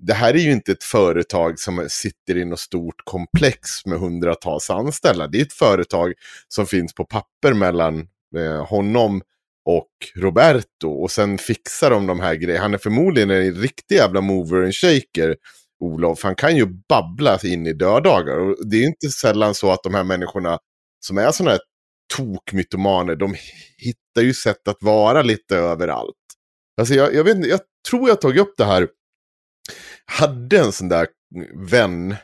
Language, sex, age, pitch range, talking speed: Swedish, male, 30-49, 90-120 Hz, 175 wpm